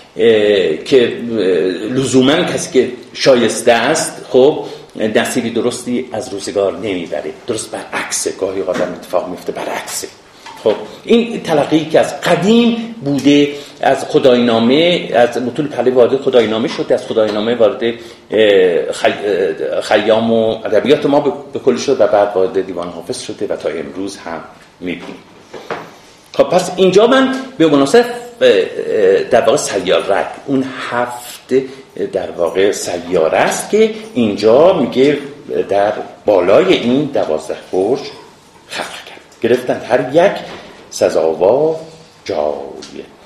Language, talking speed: Persian, 120 wpm